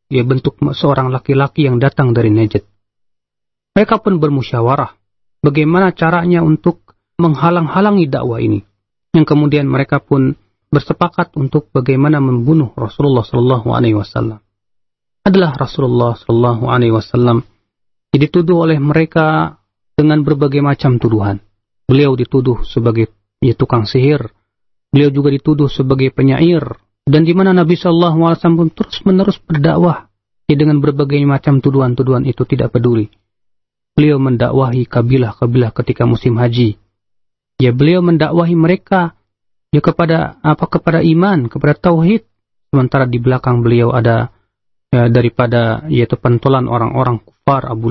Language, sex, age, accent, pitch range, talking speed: Indonesian, male, 40-59, native, 120-150 Hz, 120 wpm